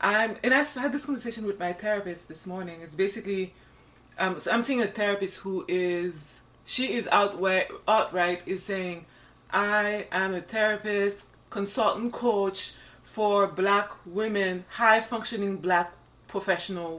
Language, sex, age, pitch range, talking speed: English, female, 30-49, 170-205 Hz, 130 wpm